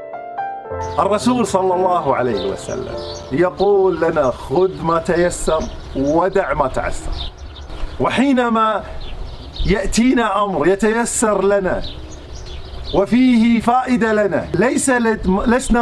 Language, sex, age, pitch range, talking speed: Arabic, male, 50-69, 175-220 Hz, 85 wpm